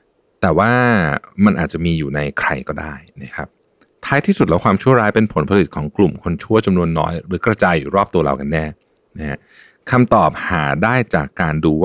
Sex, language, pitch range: male, Thai, 80-110 Hz